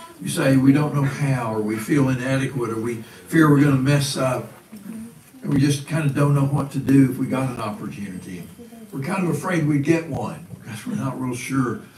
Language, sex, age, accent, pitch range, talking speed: English, male, 60-79, American, 125-155 Hz, 225 wpm